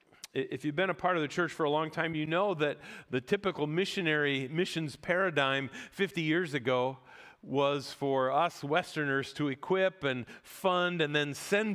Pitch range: 135-180 Hz